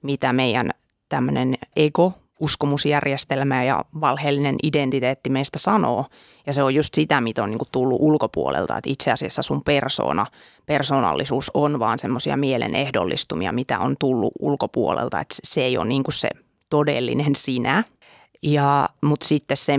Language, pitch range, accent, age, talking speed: Finnish, 135-155 Hz, native, 30-49, 140 wpm